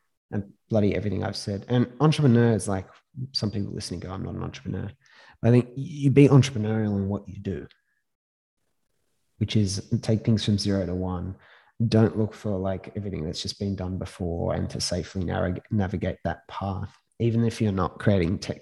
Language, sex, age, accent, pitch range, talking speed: English, male, 20-39, Australian, 100-125 Hz, 185 wpm